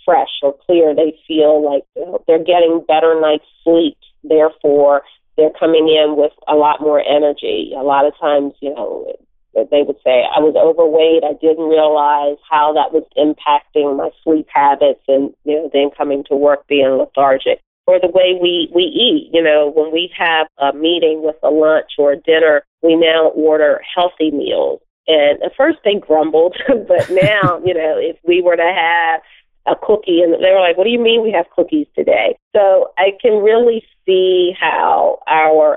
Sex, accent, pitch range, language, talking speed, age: female, American, 150-190 Hz, English, 185 wpm, 40-59